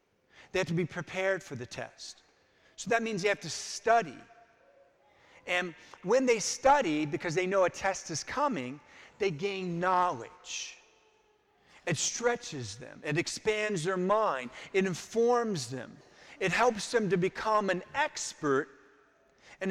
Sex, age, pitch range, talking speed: male, 40-59, 170-230 Hz, 145 wpm